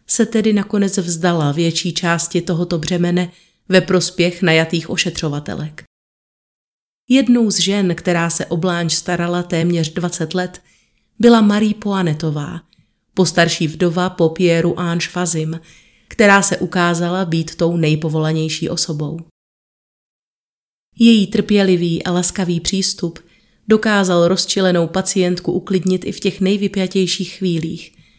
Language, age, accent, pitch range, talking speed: Czech, 30-49, native, 170-195 Hz, 105 wpm